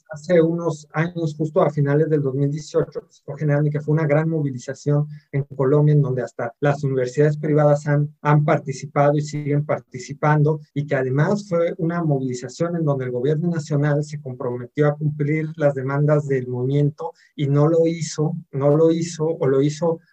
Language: English